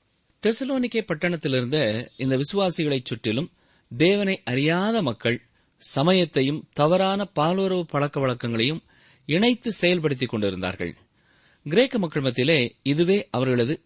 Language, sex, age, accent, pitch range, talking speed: Tamil, male, 30-49, native, 115-180 Hz, 85 wpm